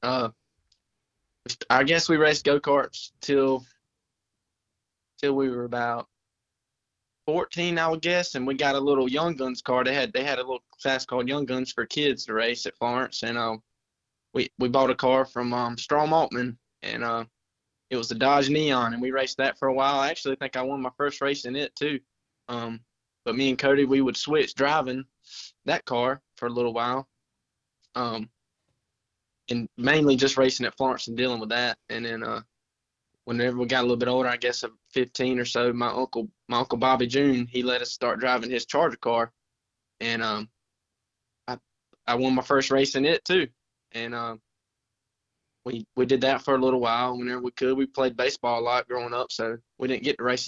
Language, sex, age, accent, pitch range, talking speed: English, male, 20-39, American, 115-135 Hz, 200 wpm